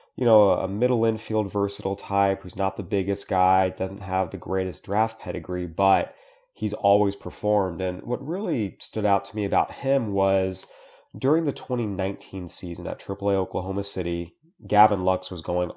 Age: 30-49